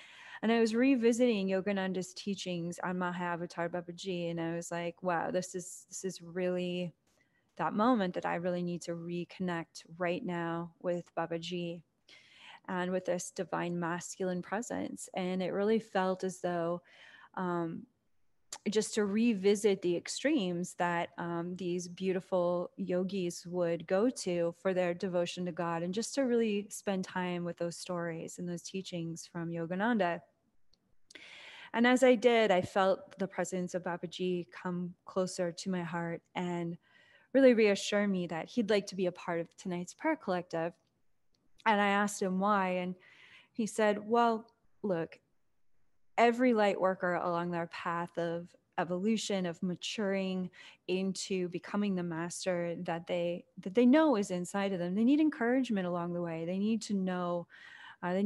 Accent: American